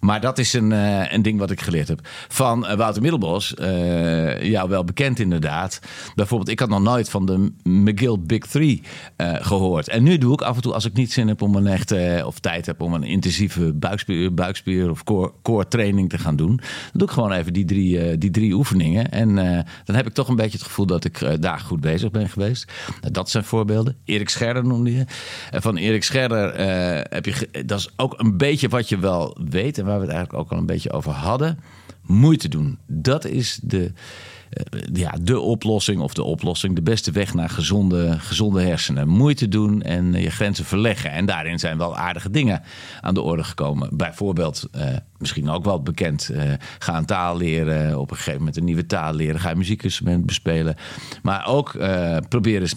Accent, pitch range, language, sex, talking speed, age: Dutch, 85-115 Hz, Dutch, male, 215 wpm, 50-69